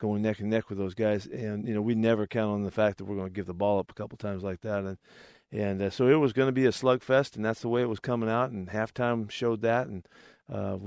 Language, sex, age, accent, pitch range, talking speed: English, male, 40-59, American, 100-115 Hz, 300 wpm